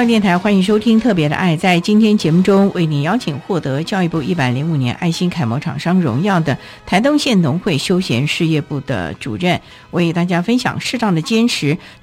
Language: Chinese